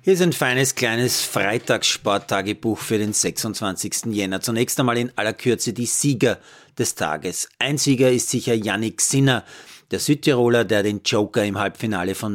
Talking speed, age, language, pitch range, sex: 160 wpm, 40-59, German, 105-135 Hz, male